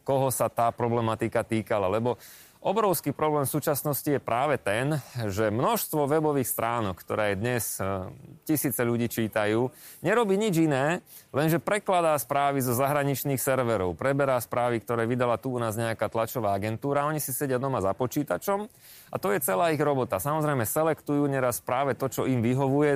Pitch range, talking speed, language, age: 120-155 Hz, 160 wpm, Slovak, 30-49